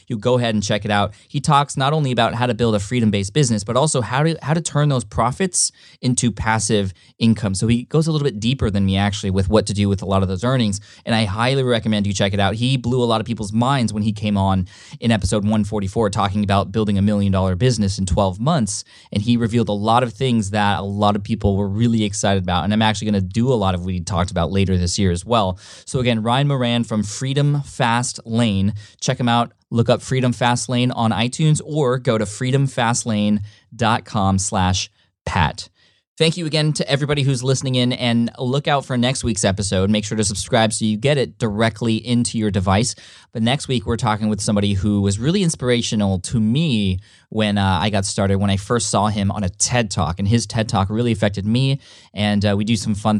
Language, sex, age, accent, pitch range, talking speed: English, male, 20-39, American, 100-125 Hz, 230 wpm